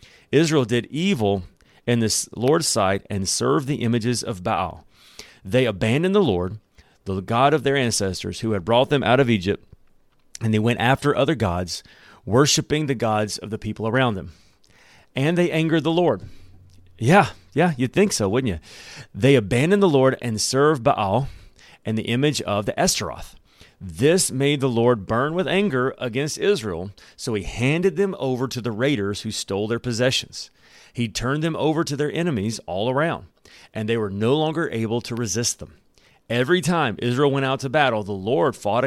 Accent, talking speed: American, 180 wpm